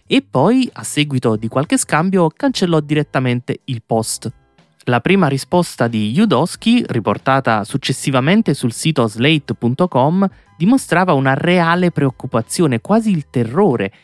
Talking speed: 120 wpm